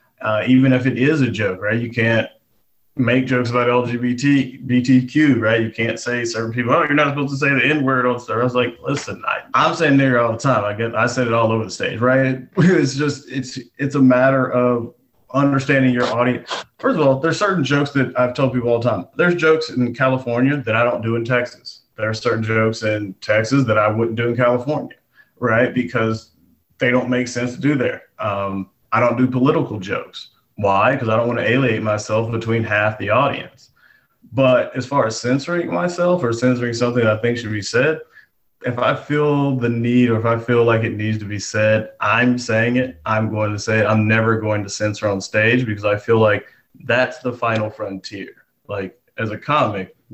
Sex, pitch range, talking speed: male, 110-130 Hz, 215 wpm